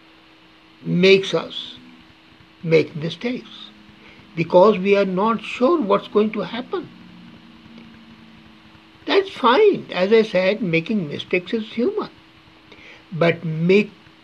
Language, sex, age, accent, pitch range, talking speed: English, male, 60-79, Indian, 165-245 Hz, 100 wpm